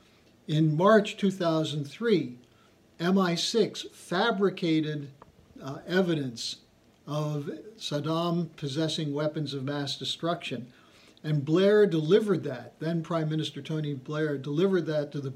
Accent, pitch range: American, 140-175 Hz